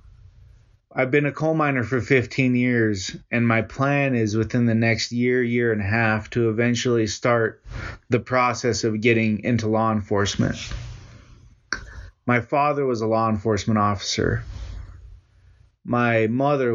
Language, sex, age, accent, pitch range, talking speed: English, male, 30-49, American, 100-120 Hz, 140 wpm